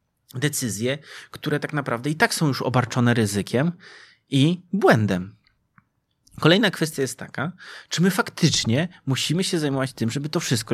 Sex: male